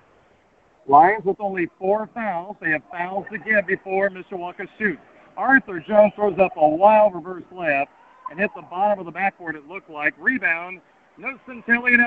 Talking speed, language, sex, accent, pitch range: 180 wpm, English, male, American, 180-225 Hz